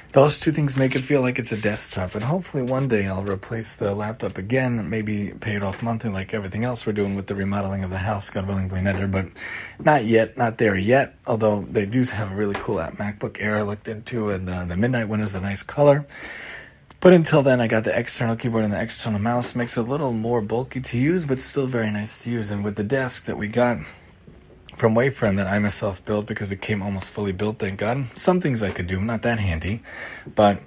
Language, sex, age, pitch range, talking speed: English, male, 30-49, 105-125 Hz, 235 wpm